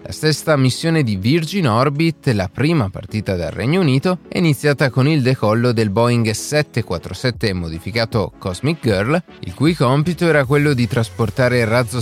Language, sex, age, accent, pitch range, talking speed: Italian, male, 30-49, native, 105-150 Hz, 160 wpm